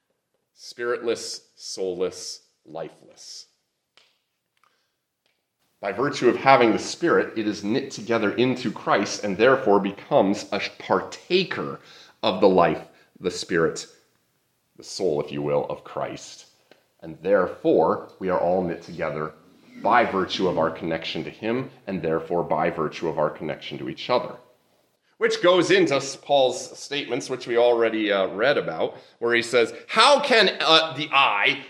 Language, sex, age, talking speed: English, male, 30-49, 140 wpm